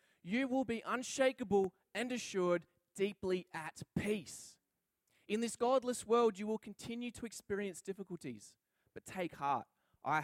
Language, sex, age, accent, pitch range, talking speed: English, male, 20-39, Australian, 160-225 Hz, 135 wpm